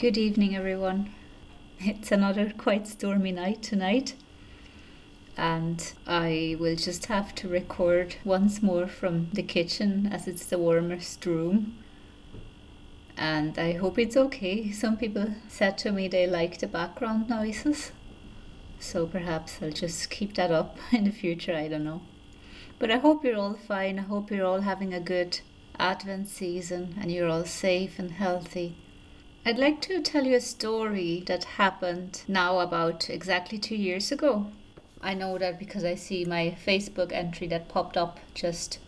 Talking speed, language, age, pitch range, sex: 160 wpm, English, 30-49, 170-200 Hz, female